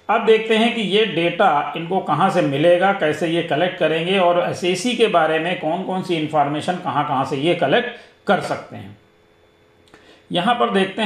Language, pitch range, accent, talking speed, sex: Hindi, 160-210 Hz, native, 180 wpm, male